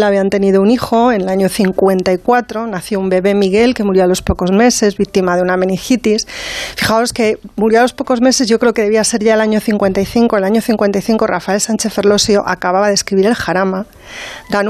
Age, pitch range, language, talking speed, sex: 30-49, 200-235 Hz, Spanish, 205 wpm, female